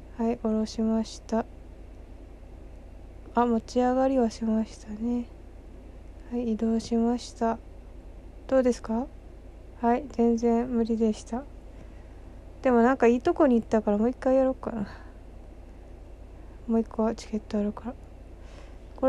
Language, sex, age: Japanese, female, 20-39